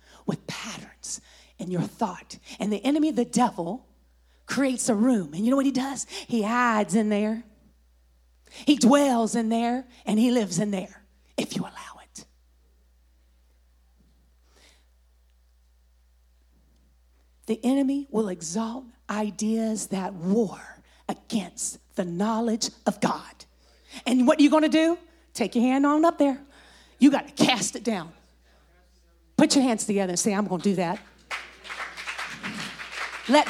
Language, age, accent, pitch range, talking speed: English, 40-59, American, 165-250 Hz, 140 wpm